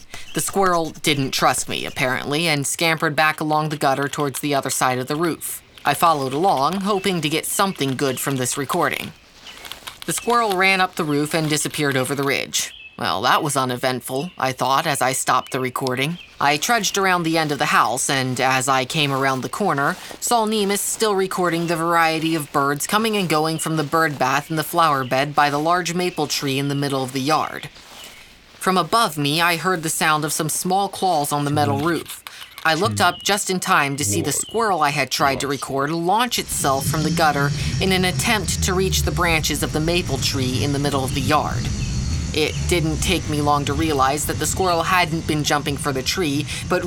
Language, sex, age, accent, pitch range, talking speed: English, female, 20-39, American, 140-175 Hz, 210 wpm